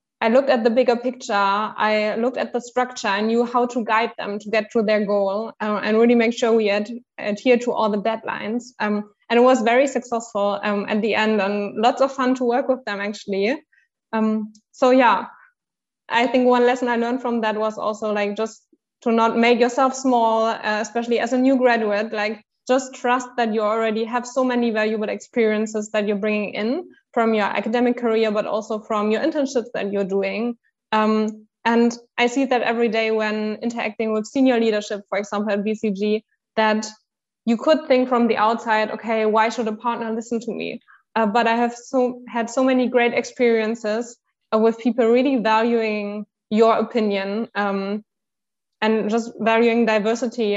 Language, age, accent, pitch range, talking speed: English, 20-39, German, 215-245 Hz, 190 wpm